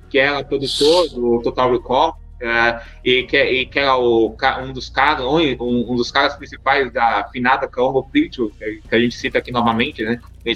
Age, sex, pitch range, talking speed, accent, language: 20-39, male, 140-180 Hz, 170 wpm, Brazilian, Portuguese